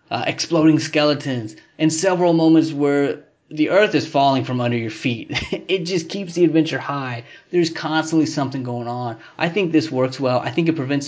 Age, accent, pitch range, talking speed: 20-39, American, 125-155 Hz, 190 wpm